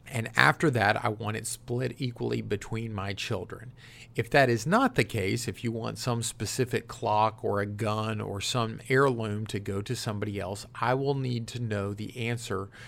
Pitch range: 110-130 Hz